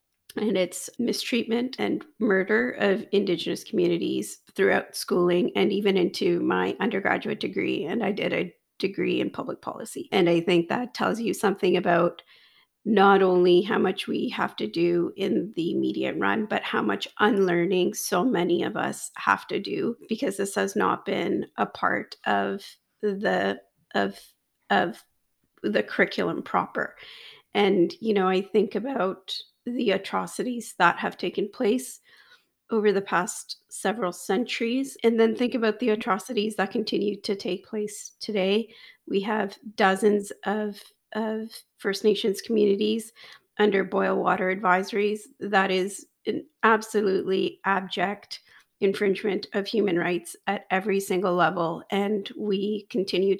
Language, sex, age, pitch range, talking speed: English, female, 40-59, 185-215 Hz, 140 wpm